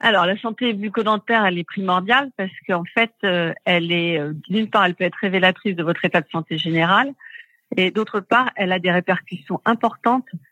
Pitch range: 170-205 Hz